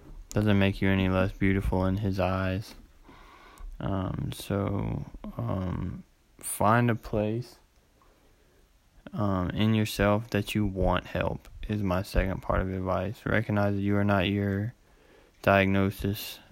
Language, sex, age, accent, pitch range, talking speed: English, male, 20-39, American, 95-105 Hz, 125 wpm